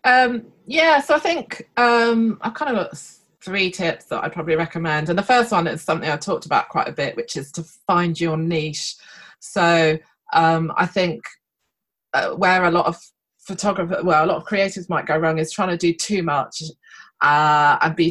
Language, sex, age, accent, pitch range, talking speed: English, female, 20-39, British, 160-200 Hz, 200 wpm